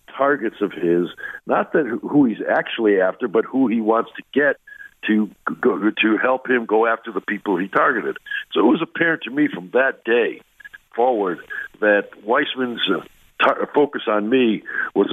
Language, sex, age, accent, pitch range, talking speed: English, male, 60-79, American, 110-155 Hz, 175 wpm